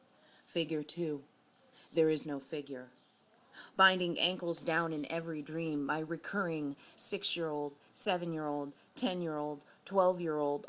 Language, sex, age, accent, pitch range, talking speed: English, female, 30-49, American, 150-175 Hz, 100 wpm